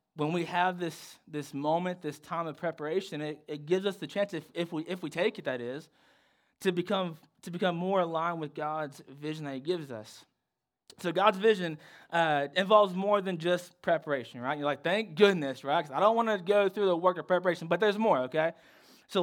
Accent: American